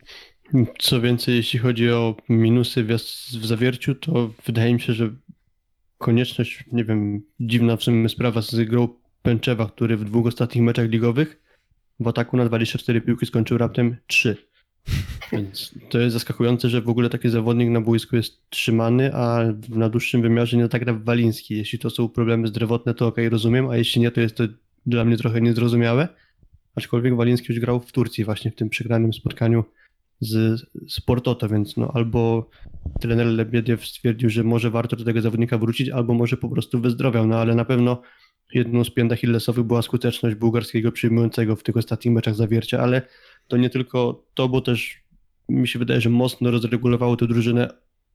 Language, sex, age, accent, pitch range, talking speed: Polish, male, 20-39, native, 115-120 Hz, 175 wpm